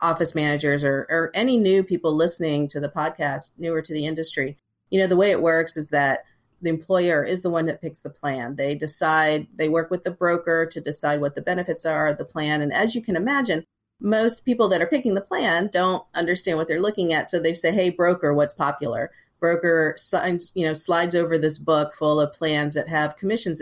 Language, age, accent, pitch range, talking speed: English, 40-59, American, 150-185 Hz, 220 wpm